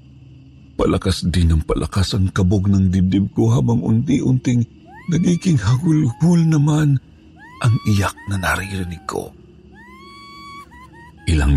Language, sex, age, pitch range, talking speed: Filipino, male, 50-69, 90-130 Hz, 100 wpm